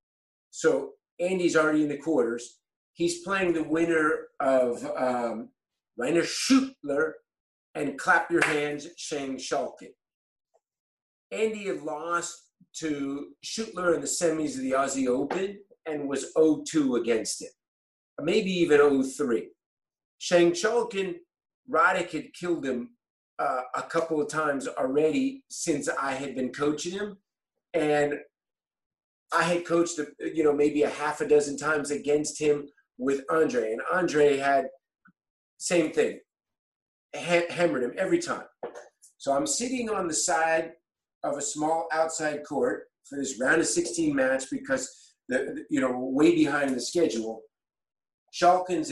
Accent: American